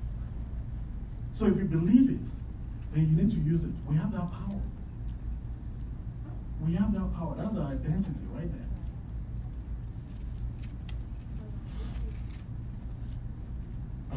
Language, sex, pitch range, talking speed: English, male, 115-160 Hz, 100 wpm